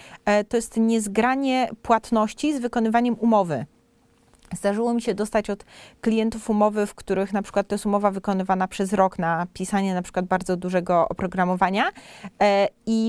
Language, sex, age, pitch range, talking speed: Polish, female, 30-49, 195-225 Hz, 145 wpm